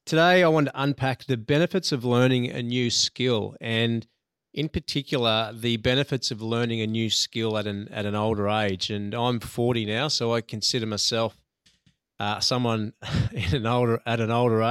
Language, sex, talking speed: English, male, 180 wpm